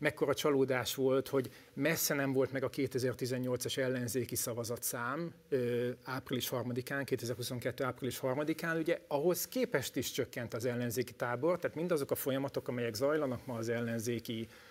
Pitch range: 125-145 Hz